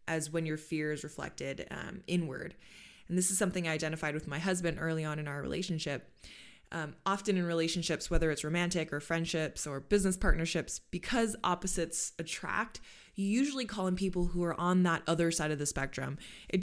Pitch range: 160-190 Hz